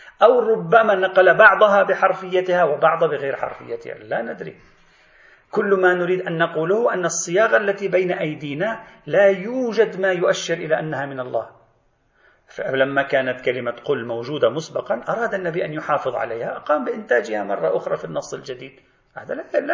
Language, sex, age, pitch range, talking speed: Arabic, male, 40-59, 160-225 Hz, 145 wpm